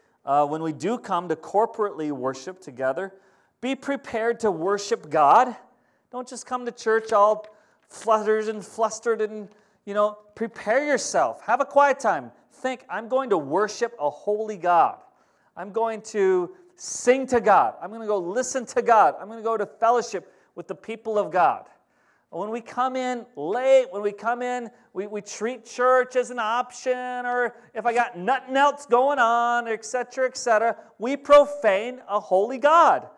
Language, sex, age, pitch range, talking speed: English, male, 40-59, 195-245 Hz, 175 wpm